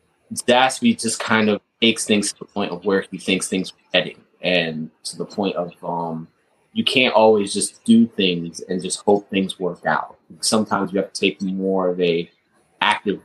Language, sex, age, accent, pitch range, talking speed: English, male, 30-49, American, 85-110 Hz, 195 wpm